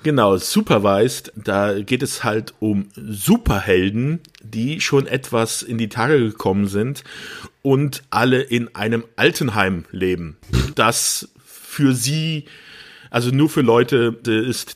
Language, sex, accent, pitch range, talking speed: German, male, German, 100-150 Hz, 120 wpm